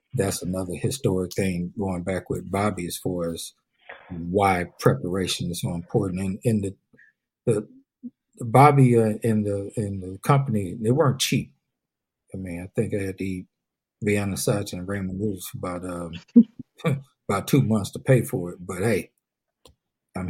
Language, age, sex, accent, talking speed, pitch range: English, 60-79, male, American, 170 wpm, 95-125 Hz